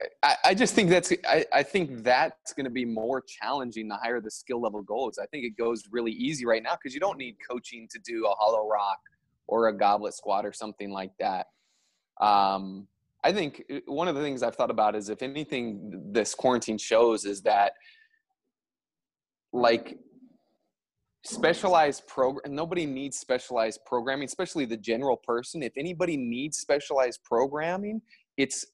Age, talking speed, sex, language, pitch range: 20-39, 175 wpm, male, English, 110-135 Hz